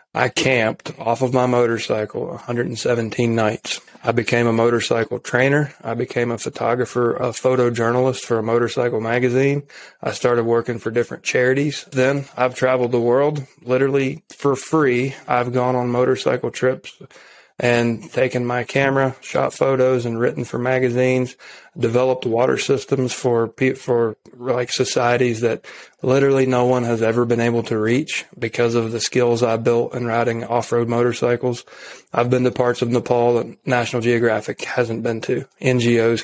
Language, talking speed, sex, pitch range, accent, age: English, 150 wpm, male, 115-130 Hz, American, 30-49